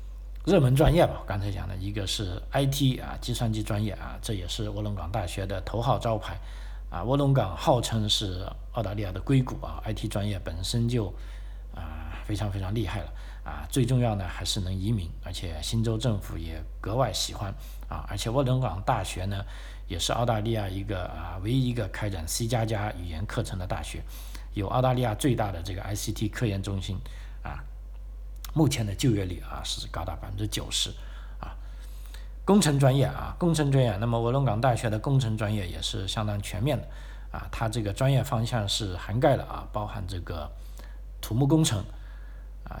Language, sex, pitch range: Chinese, male, 95-120 Hz